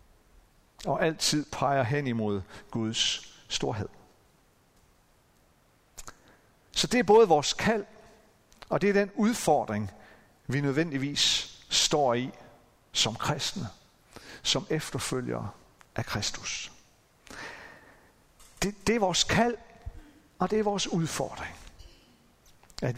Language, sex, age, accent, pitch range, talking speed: Danish, male, 60-79, native, 130-200 Hz, 100 wpm